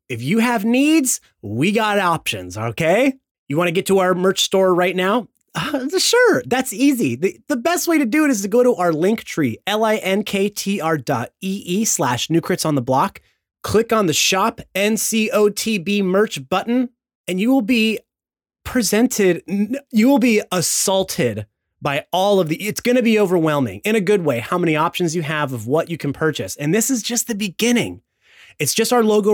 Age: 30-49